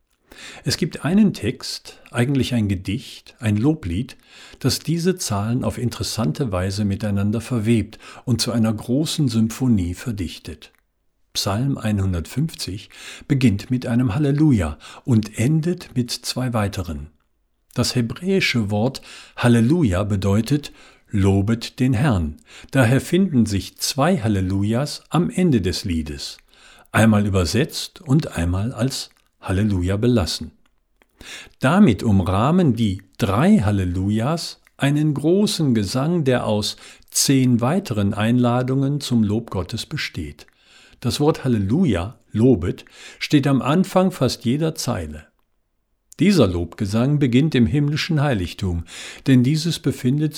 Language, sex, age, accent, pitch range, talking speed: German, male, 50-69, German, 100-140 Hz, 110 wpm